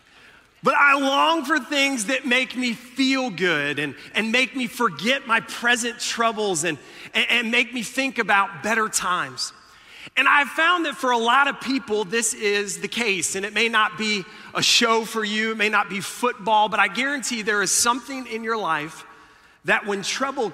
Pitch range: 165-235 Hz